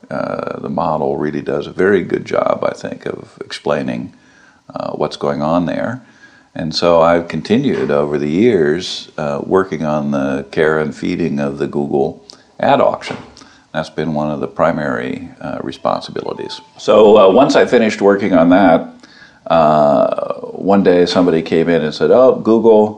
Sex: male